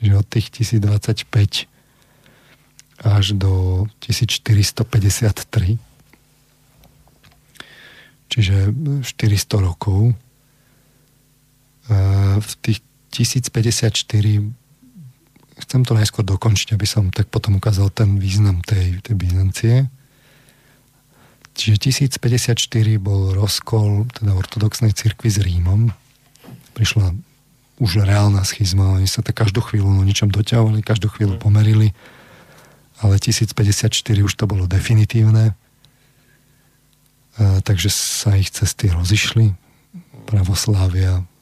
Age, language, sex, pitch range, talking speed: 40-59, Slovak, male, 100-130 Hz, 95 wpm